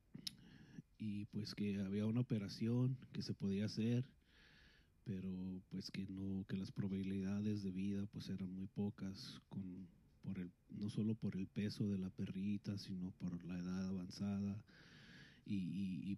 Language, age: Spanish, 30-49